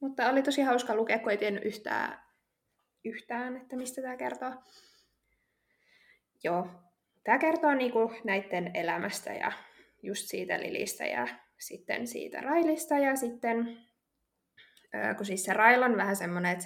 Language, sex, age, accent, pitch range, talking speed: Finnish, female, 20-39, native, 210-265 Hz, 130 wpm